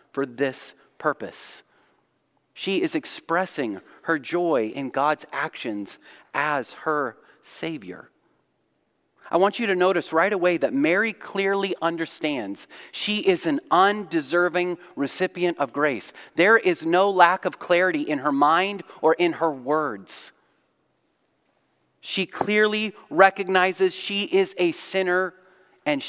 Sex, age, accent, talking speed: male, 30-49, American, 120 wpm